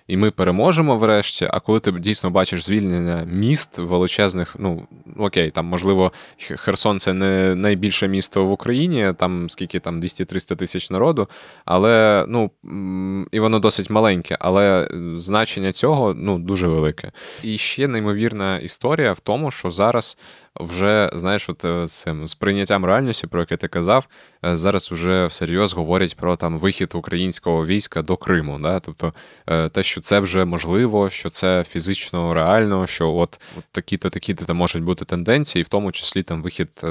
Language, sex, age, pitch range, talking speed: Ukrainian, male, 20-39, 85-100 Hz, 155 wpm